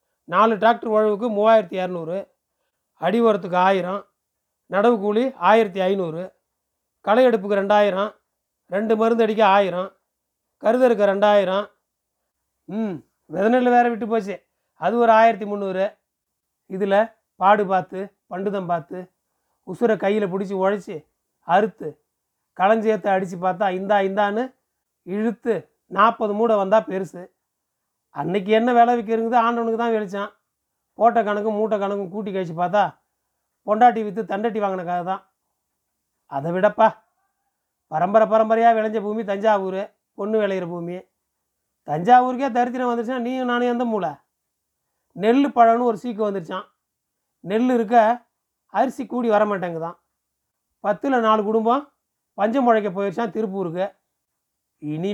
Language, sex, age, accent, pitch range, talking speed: Tamil, male, 30-49, native, 195-230 Hz, 110 wpm